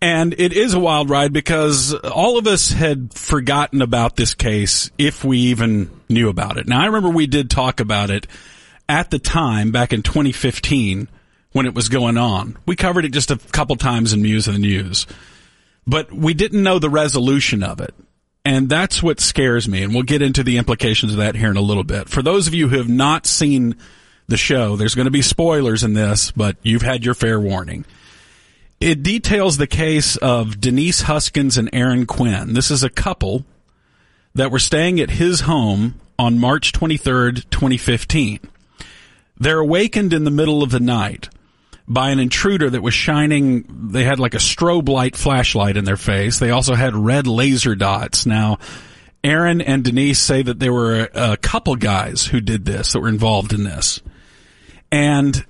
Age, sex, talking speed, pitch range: 40-59, male, 190 wpm, 110-150 Hz